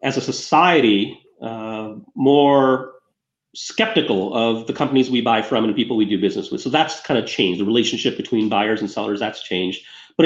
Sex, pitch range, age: male, 115-155 Hz, 30-49